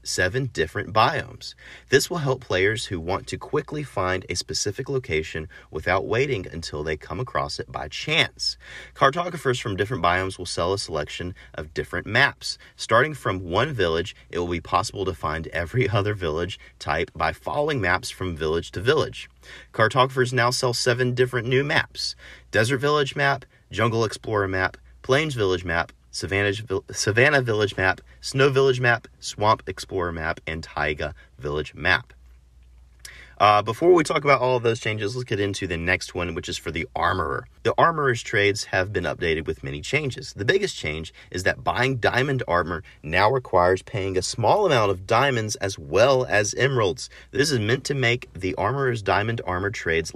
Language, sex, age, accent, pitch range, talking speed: English, male, 30-49, American, 85-125 Hz, 170 wpm